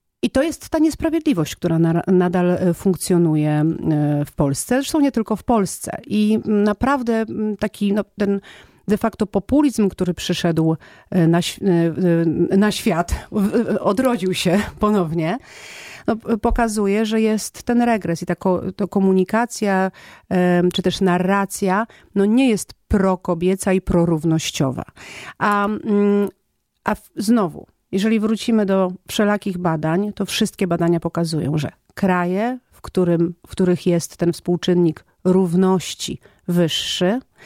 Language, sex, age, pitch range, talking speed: Polish, female, 40-59, 170-210 Hz, 110 wpm